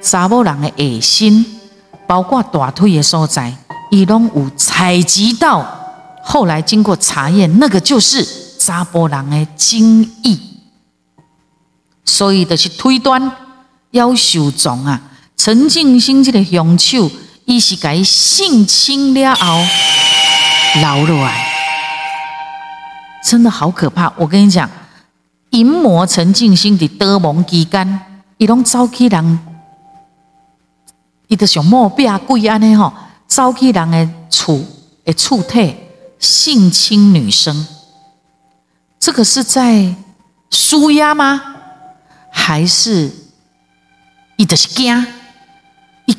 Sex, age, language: female, 50-69, Chinese